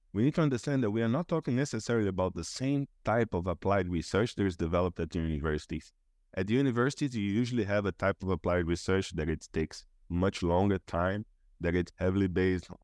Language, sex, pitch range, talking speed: English, male, 85-110 Hz, 205 wpm